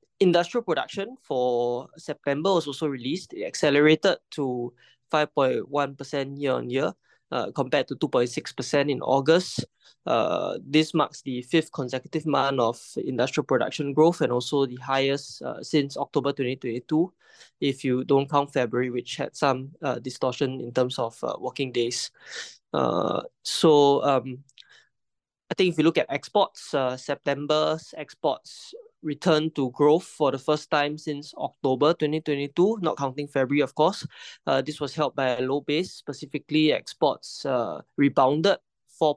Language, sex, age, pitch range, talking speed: English, male, 20-39, 130-155 Hz, 145 wpm